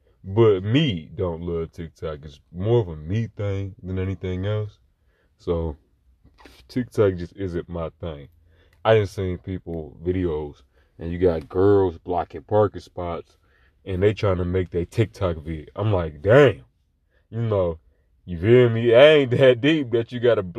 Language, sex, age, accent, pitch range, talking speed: English, male, 20-39, American, 90-125 Hz, 160 wpm